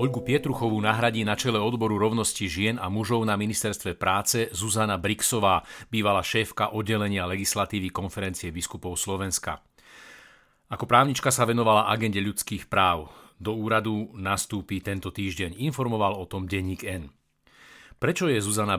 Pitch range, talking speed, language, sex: 100-120 Hz, 135 wpm, Slovak, male